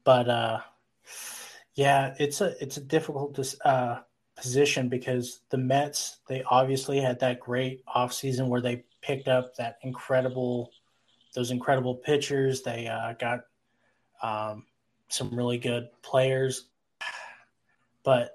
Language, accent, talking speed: English, American, 125 wpm